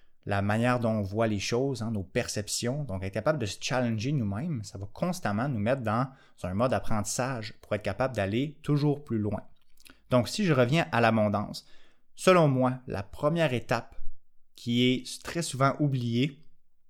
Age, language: 20-39, French